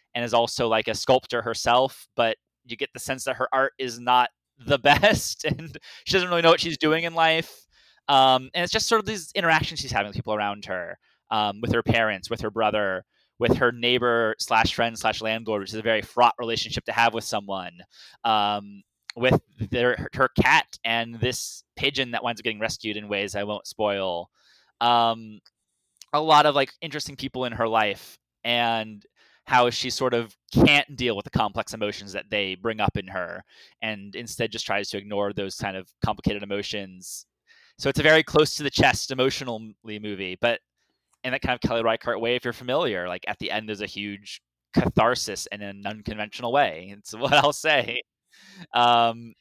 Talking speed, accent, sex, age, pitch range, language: 195 wpm, American, male, 20-39, 105-130 Hz, English